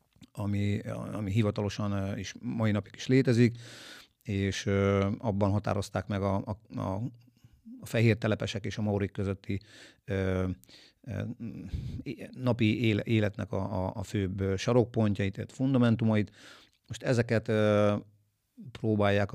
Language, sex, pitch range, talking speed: Hungarian, male, 100-115 Hz, 110 wpm